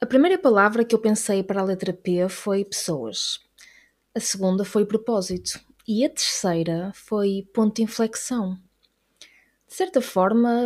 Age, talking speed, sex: 20-39, 145 wpm, female